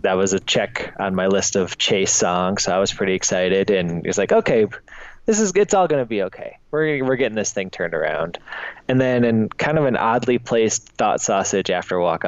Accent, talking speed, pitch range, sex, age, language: American, 235 wpm, 95-120 Hz, male, 20-39, English